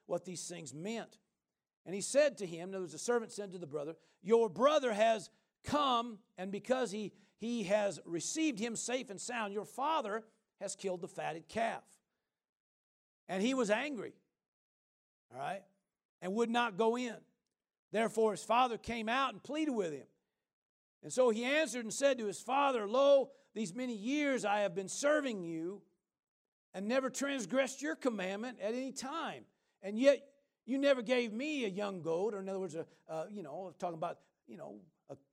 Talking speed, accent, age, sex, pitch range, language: 180 wpm, American, 50-69, male, 175-240 Hz, English